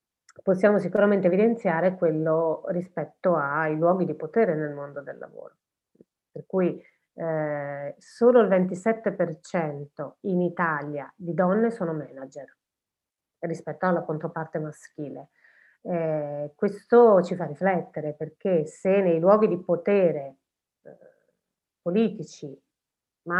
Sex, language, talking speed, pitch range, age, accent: female, Italian, 110 wpm, 160-195 Hz, 30-49, native